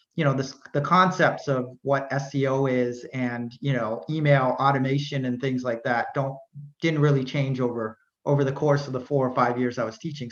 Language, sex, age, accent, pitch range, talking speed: English, male, 30-49, American, 135-160 Hz, 200 wpm